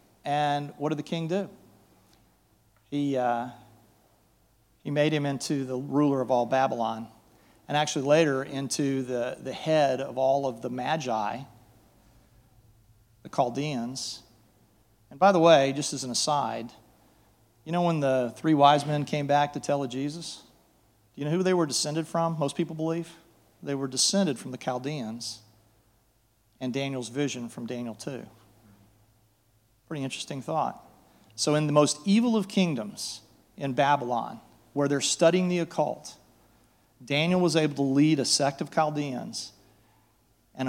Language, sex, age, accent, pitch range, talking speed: Russian, male, 40-59, American, 115-150 Hz, 150 wpm